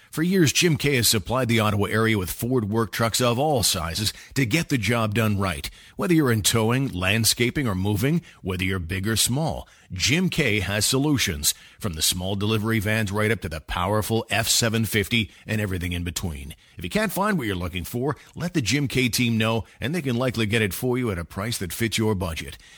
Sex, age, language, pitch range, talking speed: male, 40-59, English, 100-145 Hz, 215 wpm